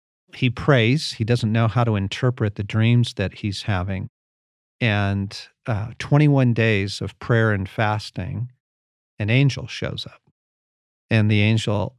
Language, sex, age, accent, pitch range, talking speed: English, male, 50-69, American, 110-140 Hz, 140 wpm